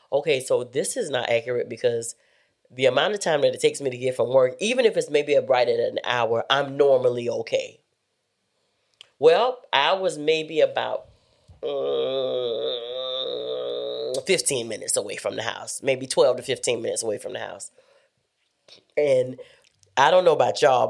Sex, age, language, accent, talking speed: female, 30-49, English, American, 165 wpm